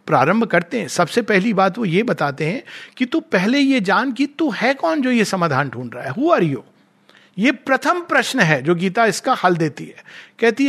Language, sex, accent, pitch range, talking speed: Hindi, male, native, 175-235 Hz, 220 wpm